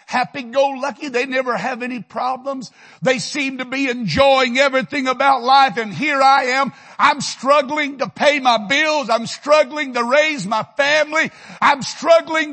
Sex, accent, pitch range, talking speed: male, American, 200-295 Hz, 155 wpm